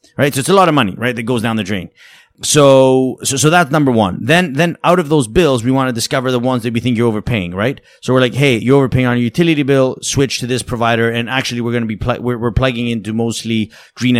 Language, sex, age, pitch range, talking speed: English, male, 30-49, 110-135 Hz, 270 wpm